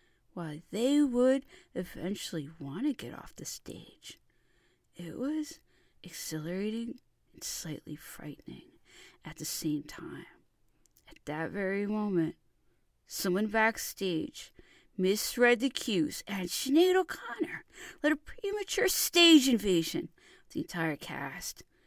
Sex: female